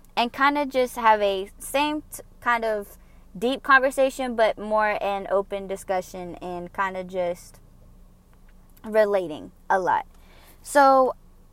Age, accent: 10-29, American